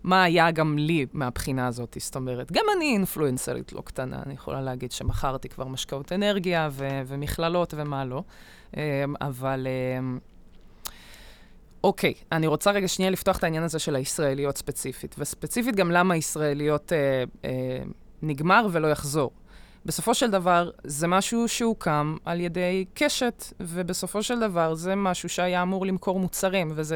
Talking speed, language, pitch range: 150 wpm, Hebrew, 150-205 Hz